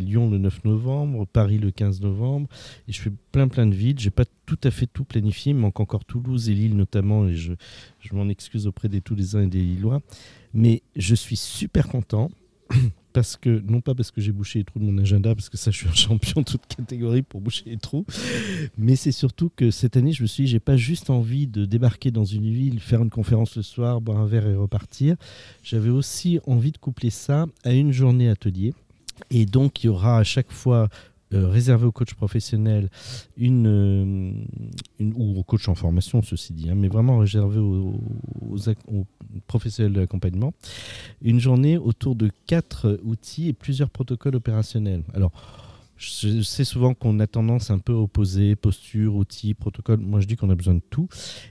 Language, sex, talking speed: French, male, 205 wpm